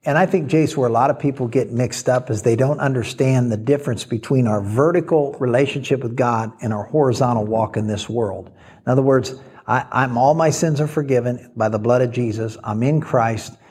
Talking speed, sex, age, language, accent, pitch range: 215 wpm, male, 50-69, English, American, 115-140 Hz